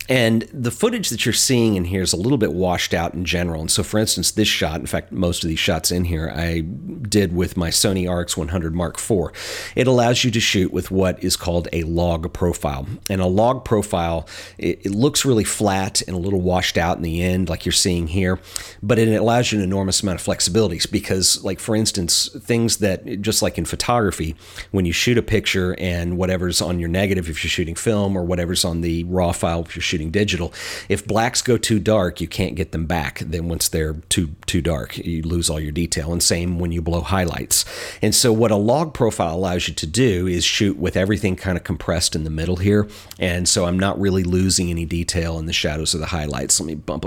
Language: English